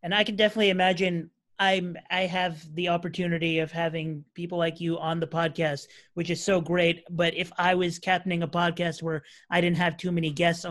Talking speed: 200 wpm